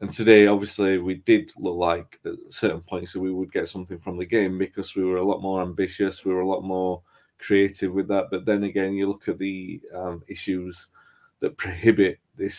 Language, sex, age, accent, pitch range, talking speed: English, male, 20-39, British, 90-105 Hz, 215 wpm